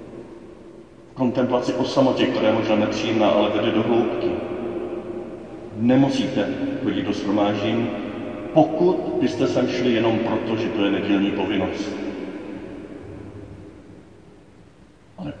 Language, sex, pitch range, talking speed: Czech, male, 115-135 Hz, 100 wpm